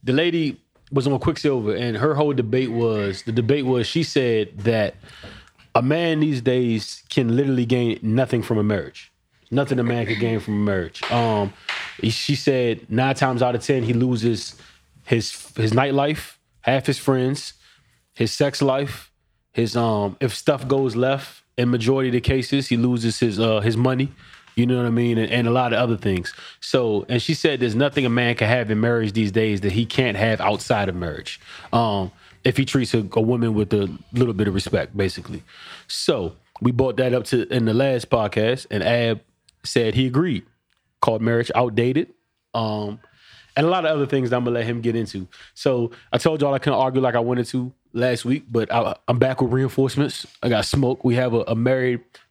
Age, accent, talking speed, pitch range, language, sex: 20-39, American, 205 wpm, 115-130 Hz, English, male